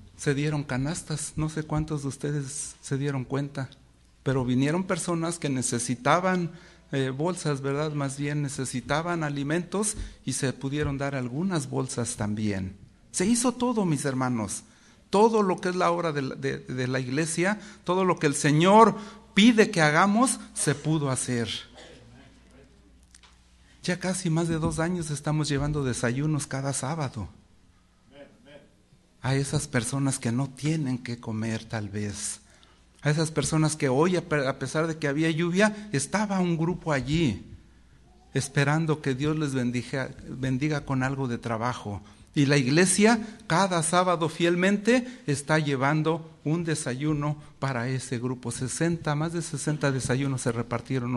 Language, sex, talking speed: English, male, 145 wpm